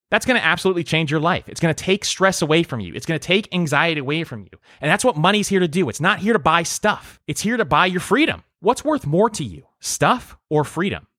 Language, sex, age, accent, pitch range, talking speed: English, male, 30-49, American, 115-175 Hz, 270 wpm